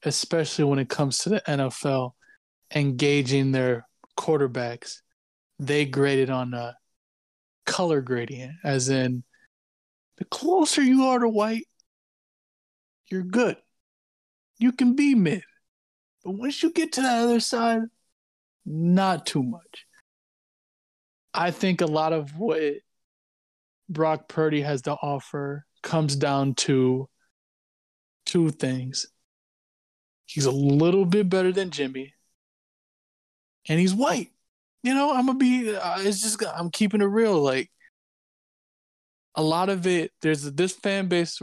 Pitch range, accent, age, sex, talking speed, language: 135-205 Hz, American, 20-39, male, 125 wpm, English